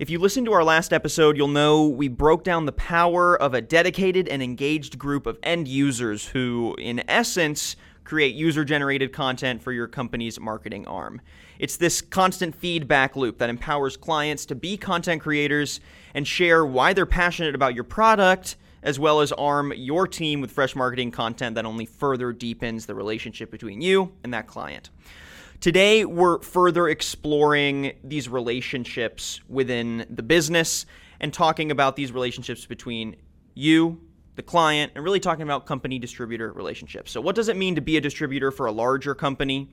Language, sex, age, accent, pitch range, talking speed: English, male, 20-39, American, 125-165 Hz, 170 wpm